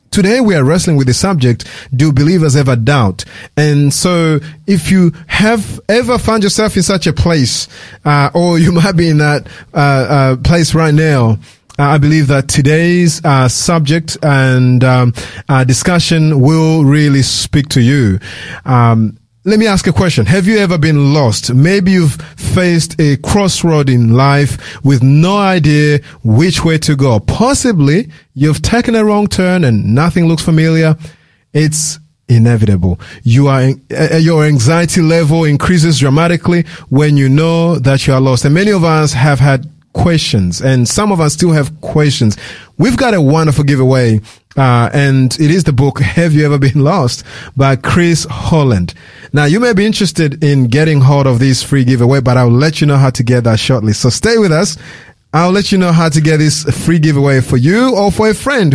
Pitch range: 130-170 Hz